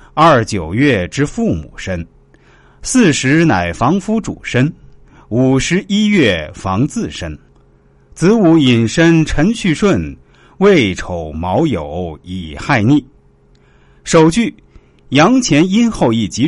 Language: Chinese